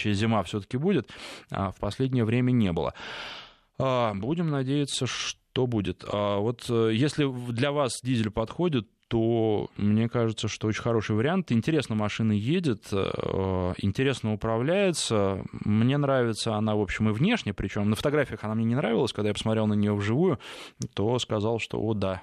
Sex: male